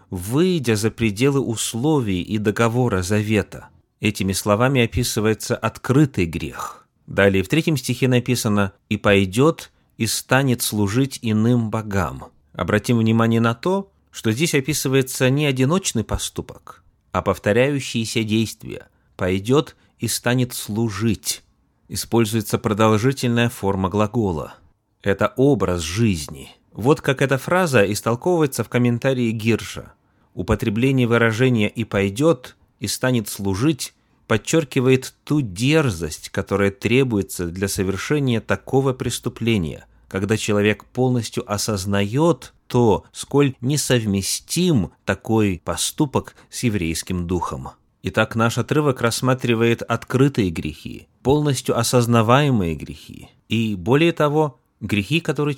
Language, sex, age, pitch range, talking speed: Russian, male, 30-49, 100-130 Hz, 105 wpm